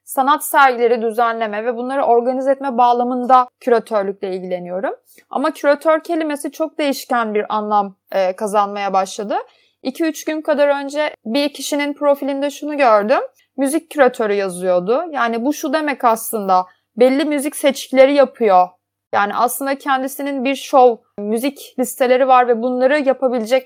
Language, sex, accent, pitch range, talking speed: Turkish, female, native, 235-295 Hz, 130 wpm